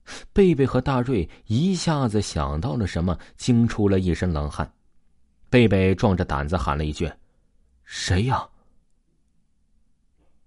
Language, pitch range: Chinese, 80-125 Hz